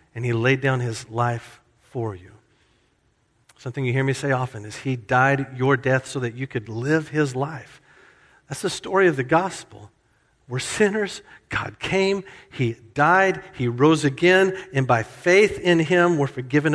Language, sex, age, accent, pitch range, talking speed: English, male, 50-69, American, 130-190 Hz, 170 wpm